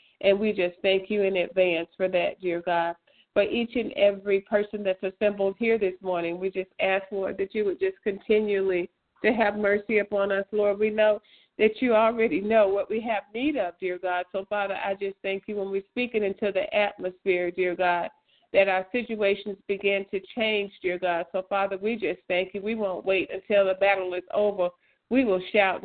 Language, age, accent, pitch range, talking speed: English, 50-69, American, 180-210 Hz, 205 wpm